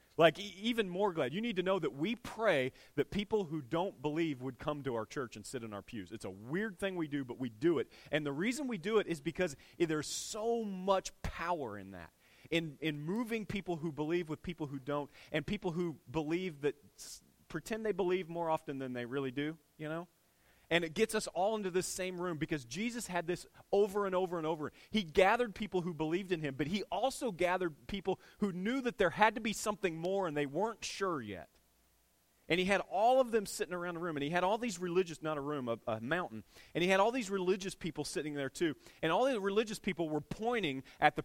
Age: 30-49